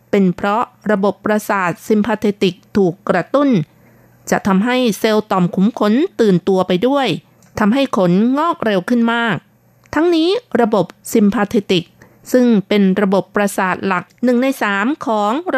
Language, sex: Thai, female